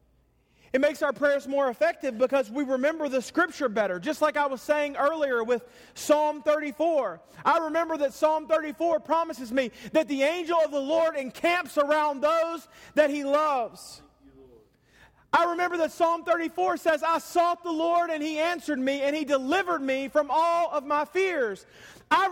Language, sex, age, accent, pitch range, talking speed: English, male, 40-59, American, 220-320 Hz, 170 wpm